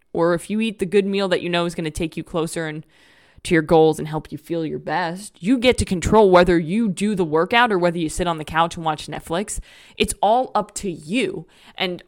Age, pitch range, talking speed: 20-39, 175-230 Hz, 255 wpm